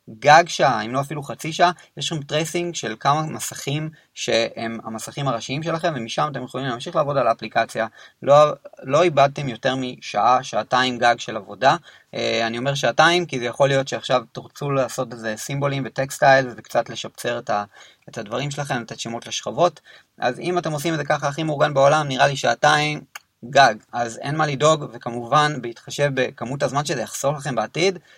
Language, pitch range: Hebrew, 120-150 Hz